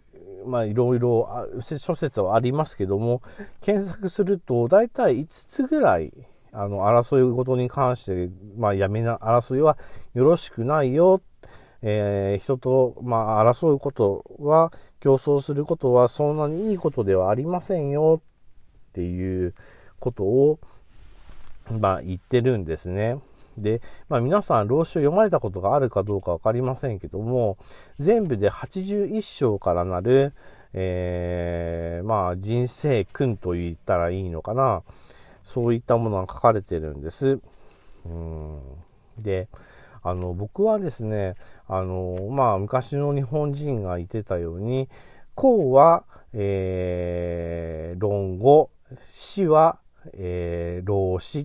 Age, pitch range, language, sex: 40-59, 95-140 Hz, Japanese, male